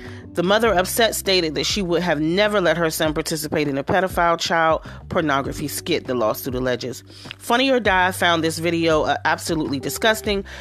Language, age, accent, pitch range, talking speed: English, 30-49, American, 145-190 Hz, 175 wpm